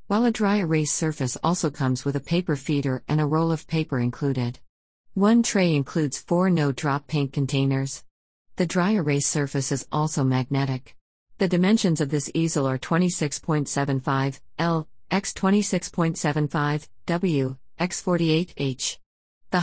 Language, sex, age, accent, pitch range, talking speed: English, female, 50-69, American, 130-170 Hz, 140 wpm